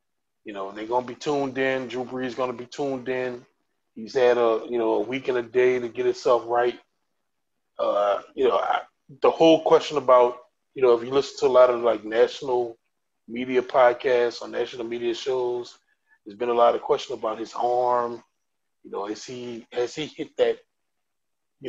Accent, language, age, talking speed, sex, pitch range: American, English, 20-39, 195 wpm, male, 120-160 Hz